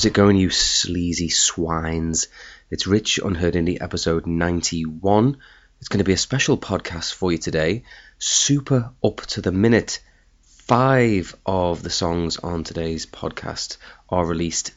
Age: 30-49